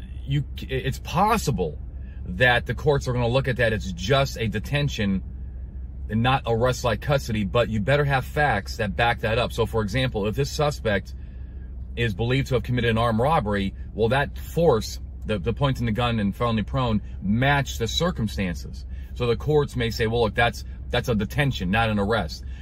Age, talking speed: 40-59, 185 wpm